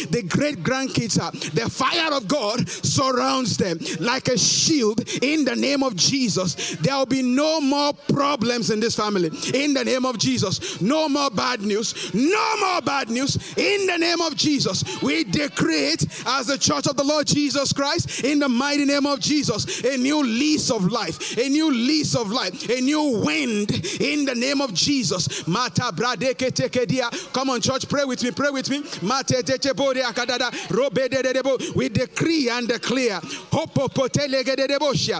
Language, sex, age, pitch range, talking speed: English, male, 30-49, 235-285 Hz, 160 wpm